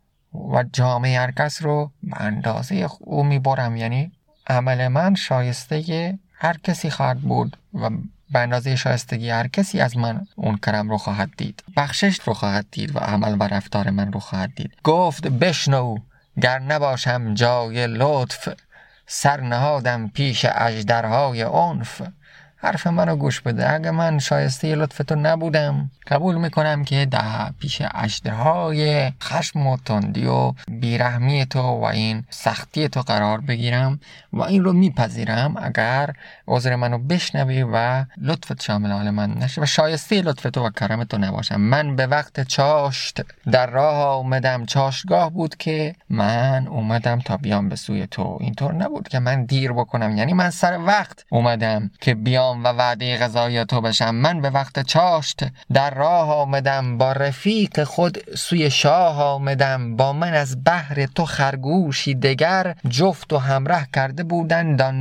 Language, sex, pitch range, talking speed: Persian, male, 120-155 Hz, 150 wpm